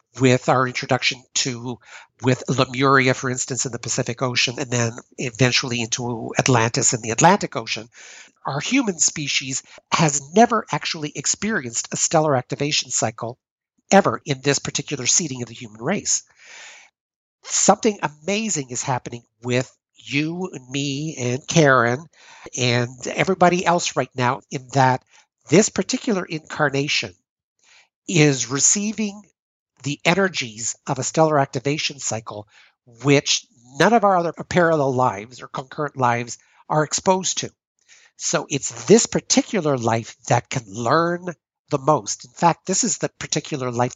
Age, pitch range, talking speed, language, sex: 50-69, 125-170 Hz, 135 wpm, English, male